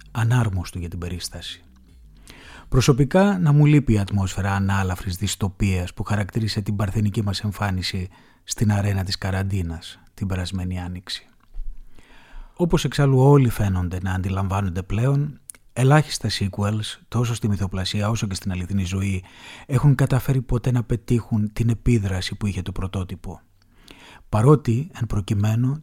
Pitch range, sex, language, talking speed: 95-125 Hz, male, Greek, 130 wpm